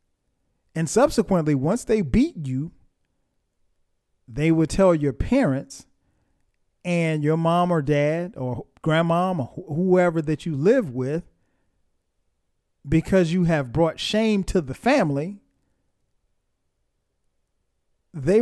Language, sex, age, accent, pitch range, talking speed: English, male, 40-59, American, 135-180 Hz, 110 wpm